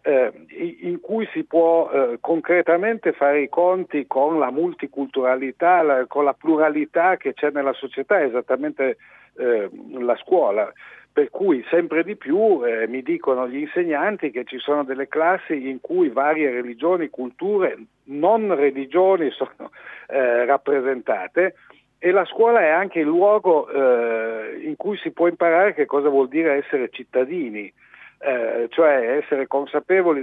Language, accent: Italian, native